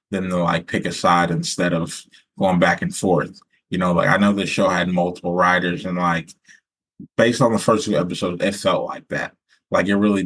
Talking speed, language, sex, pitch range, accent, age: 215 wpm, English, male, 90-100 Hz, American, 20-39